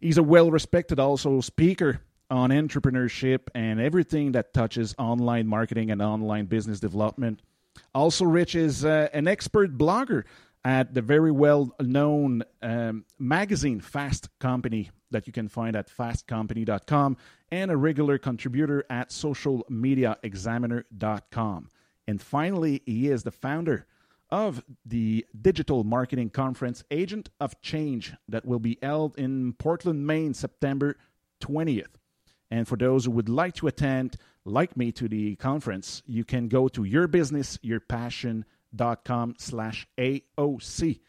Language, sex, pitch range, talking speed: French, male, 115-150 Hz, 125 wpm